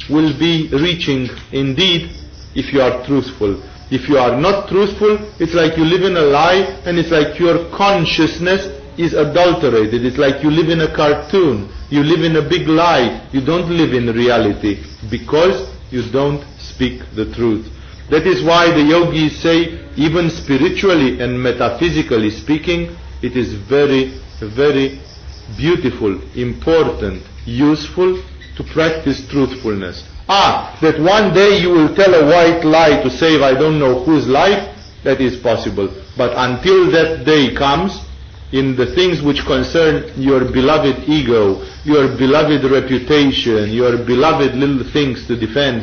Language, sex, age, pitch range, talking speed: English, male, 40-59, 120-160 Hz, 150 wpm